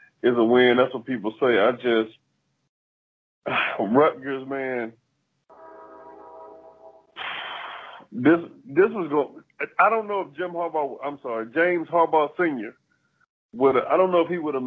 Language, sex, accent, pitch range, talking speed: English, male, American, 120-155 Hz, 145 wpm